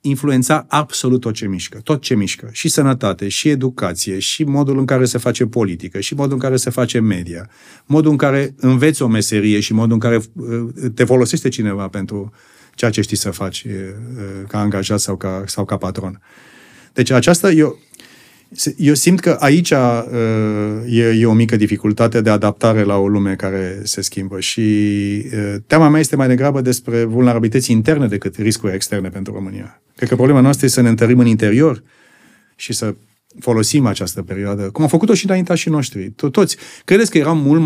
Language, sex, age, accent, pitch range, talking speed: Romanian, male, 40-59, native, 105-140 Hz, 180 wpm